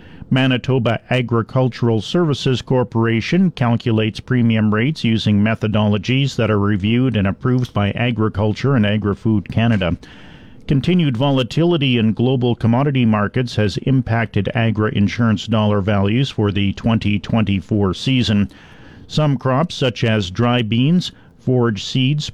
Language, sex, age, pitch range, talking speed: English, male, 40-59, 105-130 Hz, 115 wpm